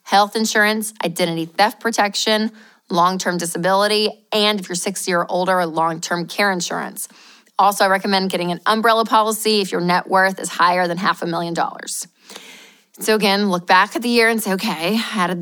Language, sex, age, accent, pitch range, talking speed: English, female, 20-39, American, 180-230 Hz, 180 wpm